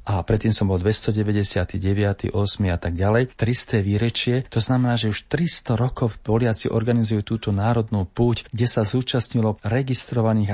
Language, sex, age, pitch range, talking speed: Slovak, male, 40-59, 100-115 Hz, 150 wpm